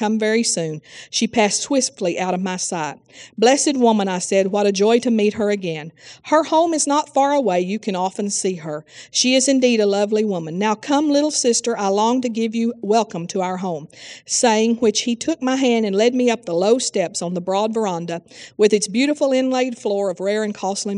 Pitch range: 185-240 Hz